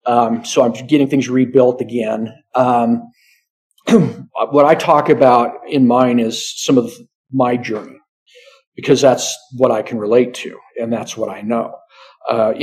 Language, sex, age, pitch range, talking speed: English, male, 50-69, 115-140 Hz, 150 wpm